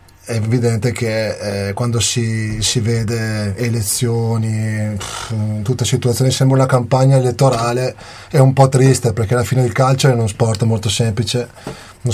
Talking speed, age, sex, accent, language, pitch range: 155 wpm, 20-39, male, native, Italian, 110-125 Hz